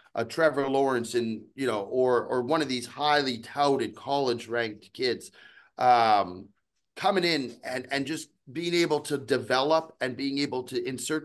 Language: English